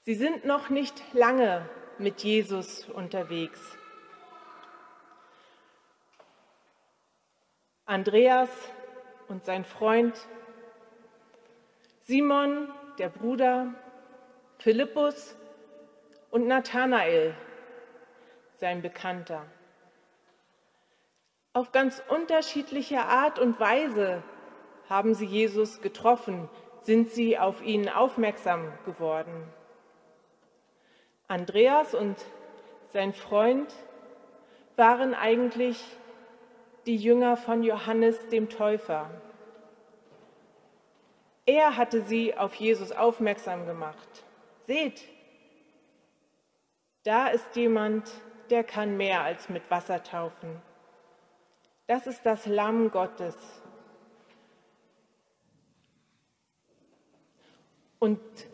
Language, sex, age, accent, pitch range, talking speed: German, female, 40-59, German, 200-250 Hz, 75 wpm